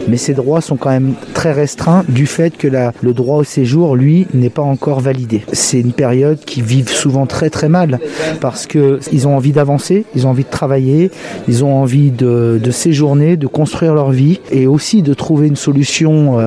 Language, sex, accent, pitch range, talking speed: French, male, French, 130-160 Hz, 210 wpm